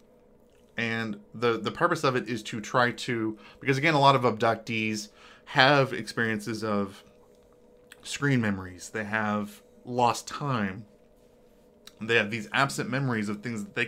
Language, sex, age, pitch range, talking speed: English, male, 20-39, 105-120 Hz, 145 wpm